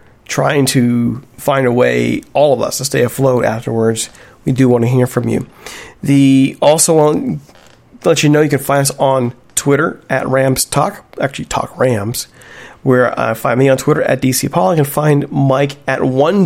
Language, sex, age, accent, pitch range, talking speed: English, male, 40-59, American, 120-145 Hz, 195 wpm